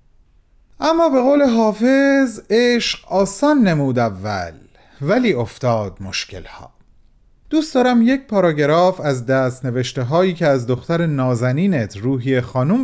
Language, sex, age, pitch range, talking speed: Persian, male, 40-59, 115-190 Hz, 110 wpm